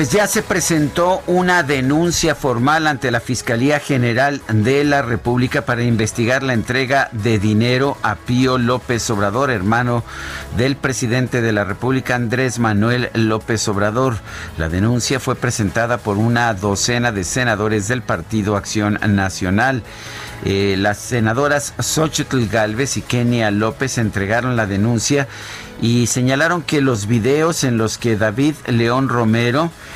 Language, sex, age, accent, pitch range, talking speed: Spanish, male, 50-69, Mexican, 105-135 Hz, 140 wpm